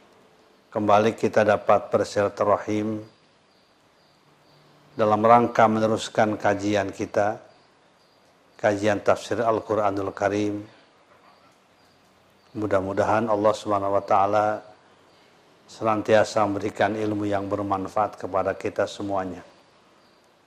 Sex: male